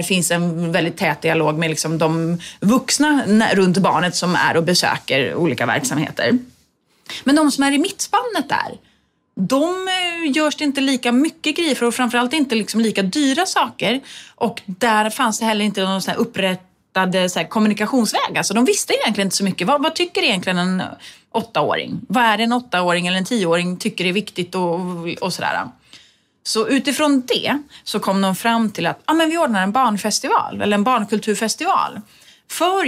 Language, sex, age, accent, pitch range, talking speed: Swedish, female, 30-49, native, 180-240 Hz, 170 wpm